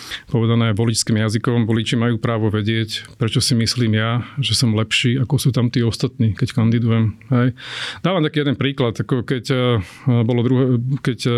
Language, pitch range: Slovak, 115-130 Hz